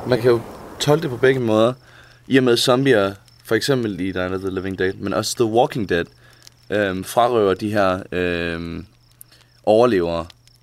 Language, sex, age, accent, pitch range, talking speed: Danish, male, 20-39, native, 110-135 Hz, 165 wpm